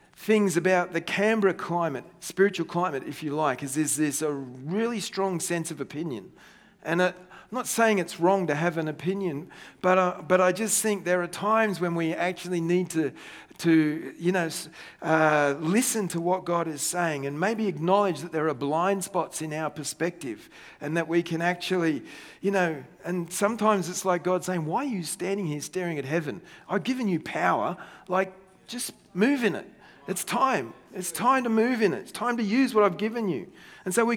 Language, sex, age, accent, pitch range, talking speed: English, male, 40-59, Australian, 165-205 Hz, 200 wpm